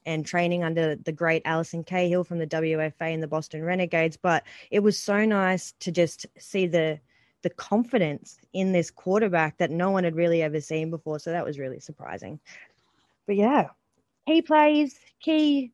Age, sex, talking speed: 20-39, female, 175 wpm